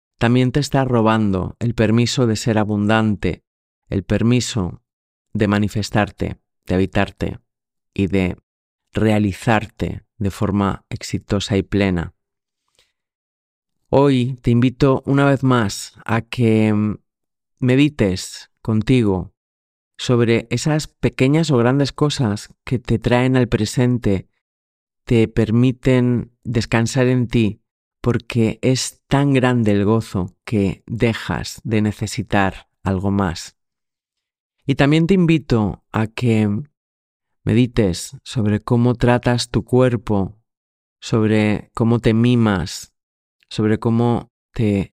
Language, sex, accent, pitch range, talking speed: Spanish, male, Spanish, 100-120 Hz, 105 wpm